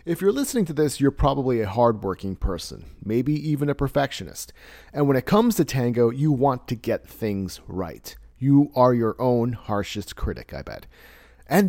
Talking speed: 180 wpm